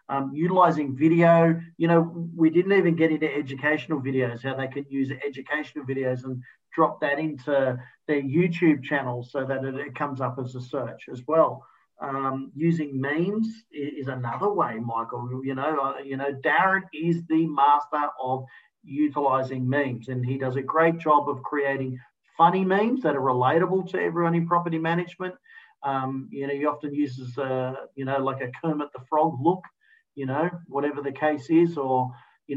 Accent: Australian